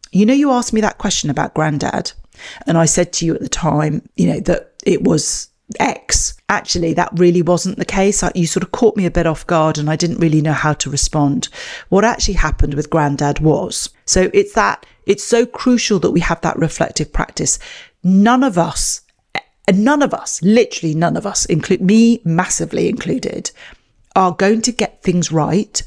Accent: British